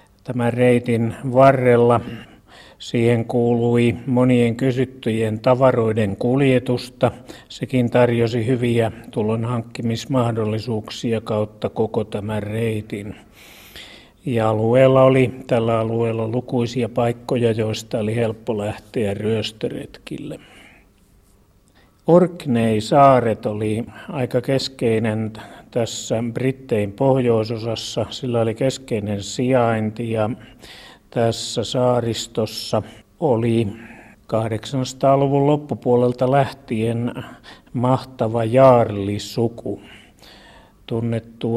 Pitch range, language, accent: 110-125 Hz, Finnish, native